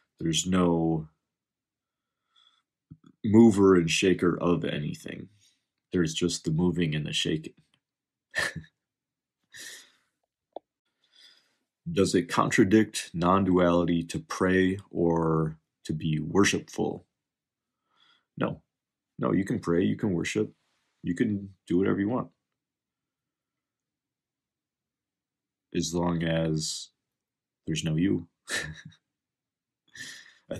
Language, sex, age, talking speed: English, male, 30-49, 90 wpm